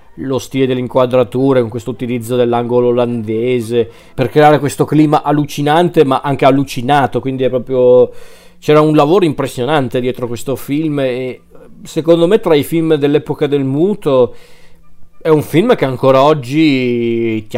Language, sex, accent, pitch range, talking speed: Italian, male, native, 120-145 Hz, 145 wpm